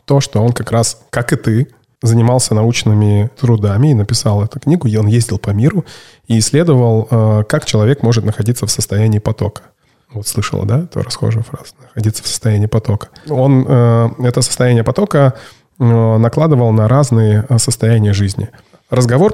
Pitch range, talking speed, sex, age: 110-130 Hz, 150 wpm, male, 20-39